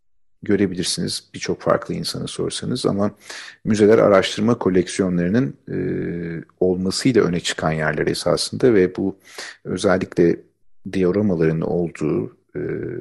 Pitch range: 85-105 Hz